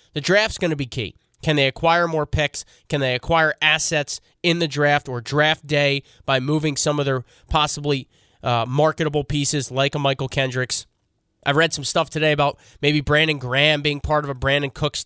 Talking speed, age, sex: 195 wpm, 20-39, male